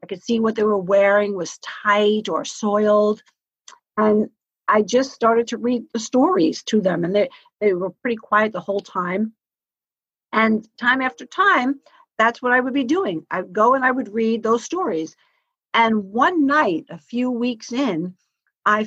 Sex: female